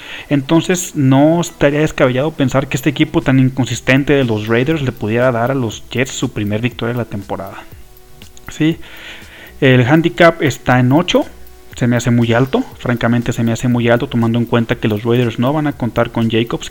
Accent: Mexican